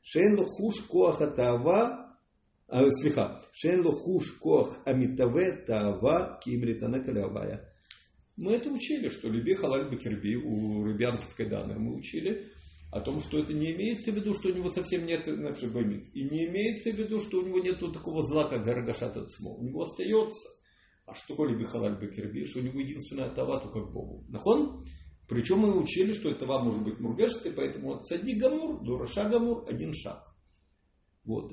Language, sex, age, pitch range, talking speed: English, male, 50-69, 110-180 Hz, 160 wpm